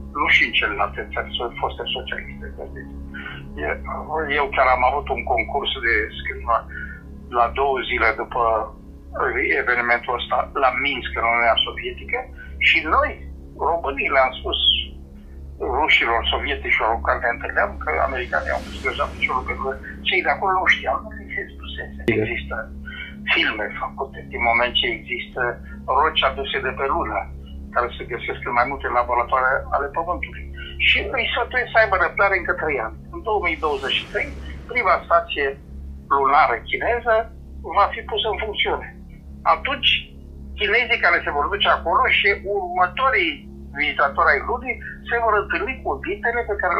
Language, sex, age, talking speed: Romanian, male, 60-79, 145 wpm